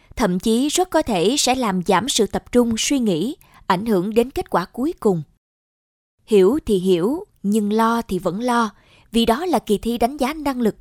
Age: 20-39